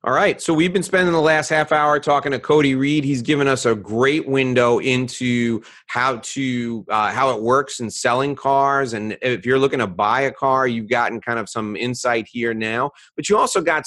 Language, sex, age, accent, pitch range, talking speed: English, male, 30-49, American, 115-150 Hz, 215 wpm